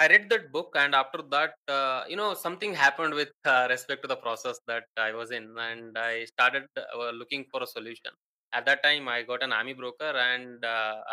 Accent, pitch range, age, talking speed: Indian, 125-165 Hz, 20-39, 210 wpm